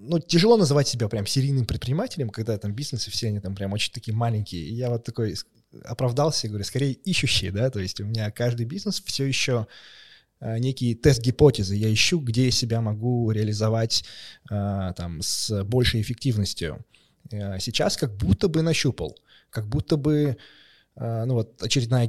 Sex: male